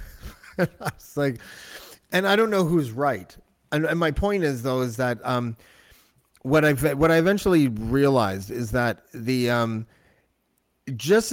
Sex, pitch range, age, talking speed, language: male, 110-140 Hz, 30-49, 150 wpm, English